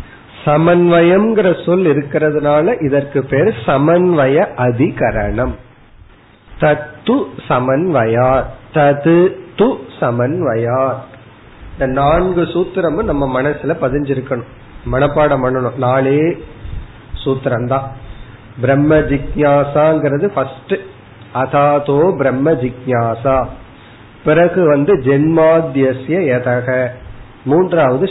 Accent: native